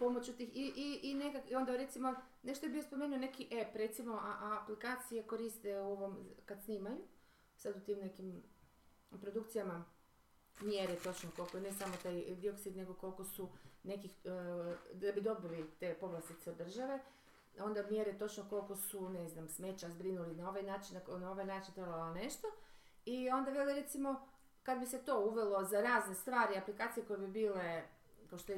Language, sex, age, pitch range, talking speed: Croatian, female, 30-49, 195-260 Hz, 170 wpm